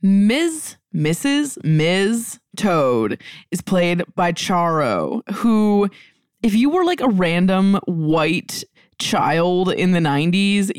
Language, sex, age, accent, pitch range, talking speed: English, female, 20-39, American, 170-230 Hz, 110 wpm